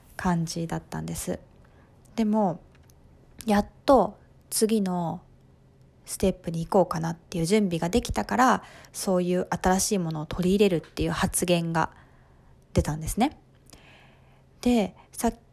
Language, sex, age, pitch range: Japanese, female, 20-39, 170-225 Hz